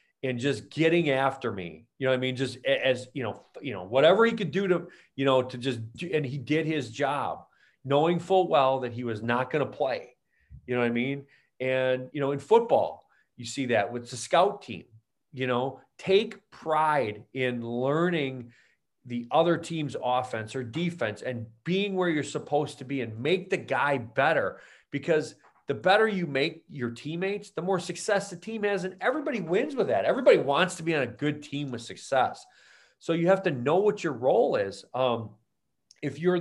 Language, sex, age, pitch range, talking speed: English, male, 40-59, 130-175 Hz, 200 wpm